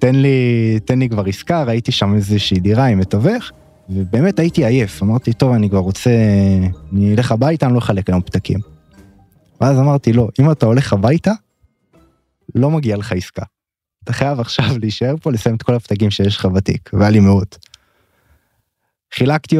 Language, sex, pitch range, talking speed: Hebrew, male, 95-135 Hz, 170 wpm